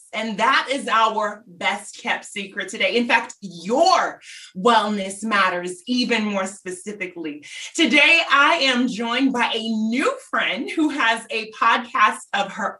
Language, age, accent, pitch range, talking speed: English, 20-39, American, 215-290 Hz, 140 wpm